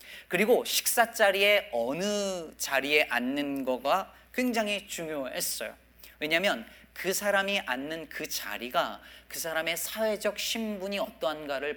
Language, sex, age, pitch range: Korean, male, 40-59, 140-205 Hz